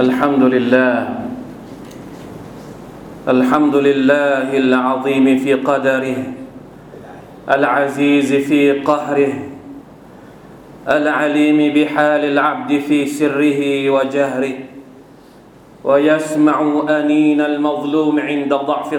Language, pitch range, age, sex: Thai, 145-155 Hz, 40-59, male